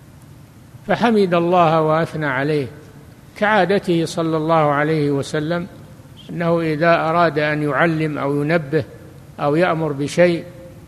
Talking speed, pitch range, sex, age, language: 105 wpm, 145-165 Hz, male, 60-79, Arabic